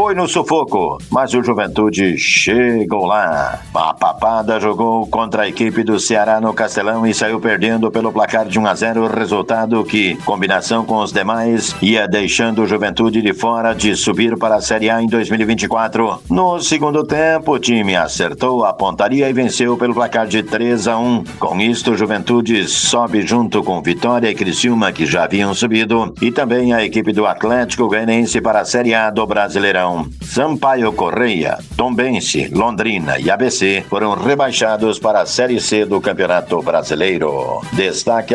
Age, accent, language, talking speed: 60-79, Brazilian, Portuguese, 165 wpm